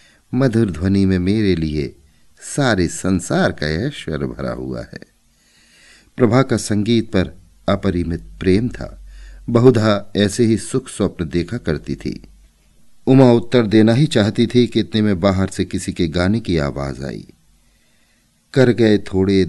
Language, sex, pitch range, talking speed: Hindi, male, 80-115 Hz, 140 wpm